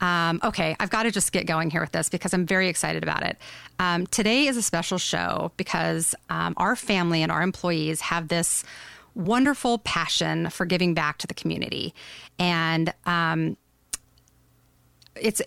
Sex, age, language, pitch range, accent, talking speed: female, 30-49, English, 160-190 Hz, American, 165 wpm